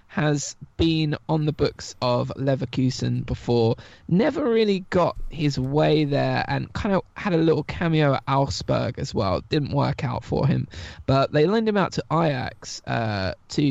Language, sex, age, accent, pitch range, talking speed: English, male, 20-39, British, 125-150 Hz, 170 wpm